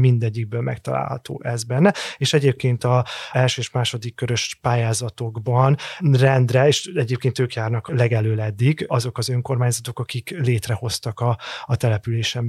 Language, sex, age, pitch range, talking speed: Hungarian, male, 30-49, 115-135 Hz, 125 wpm